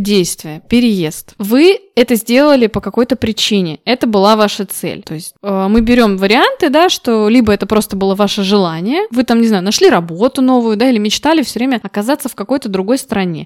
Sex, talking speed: female, 190 wpm